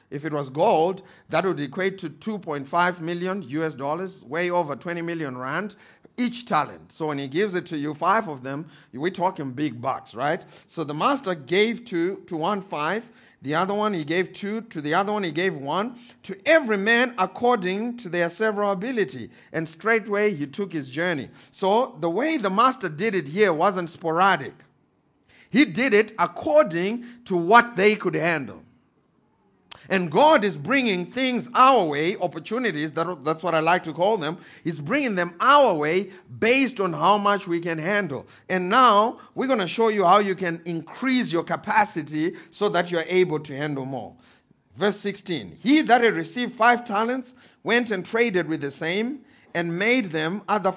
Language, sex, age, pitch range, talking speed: English, male, 50-69, 165-220 Hz, 180 wpm